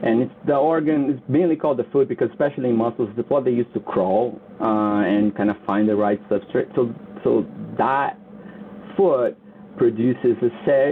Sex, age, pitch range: male, 30-49, 105-125 Hz